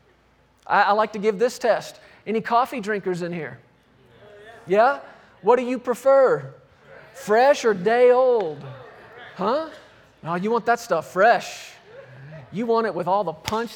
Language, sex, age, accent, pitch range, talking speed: English, male, 40-59, American, 165-215 Hz, 155 wpm